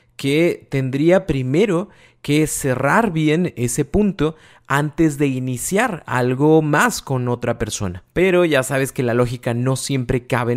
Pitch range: 125-160 Hz